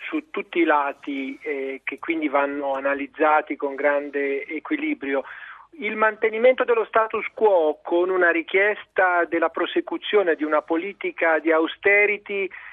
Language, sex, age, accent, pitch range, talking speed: Italian, male, 40-59, native, 150-205 Hz, 125 wpm